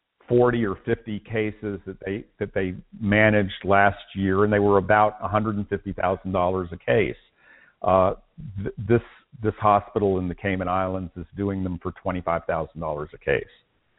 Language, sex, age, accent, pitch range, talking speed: English, male, 50-69, American, 90-110 Hz, 145 wpm